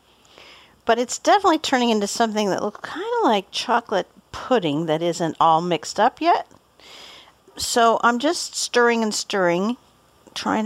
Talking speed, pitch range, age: 140 wpm, 175-215 Hz, 50-69